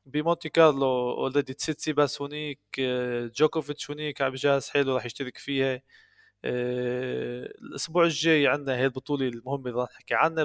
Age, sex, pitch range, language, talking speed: 20-39, male, 120-150 Hz, Arabic, 130 wpm